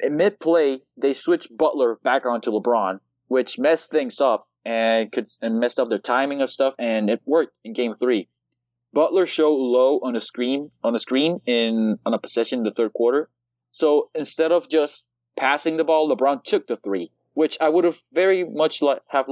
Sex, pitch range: male, 120-165 Hz